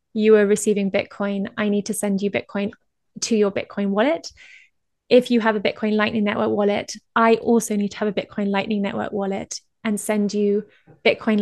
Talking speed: 190 wpm